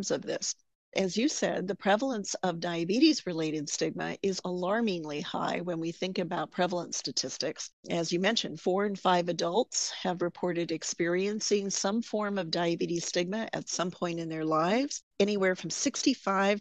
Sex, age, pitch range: female, 40-59, 170-205 Hz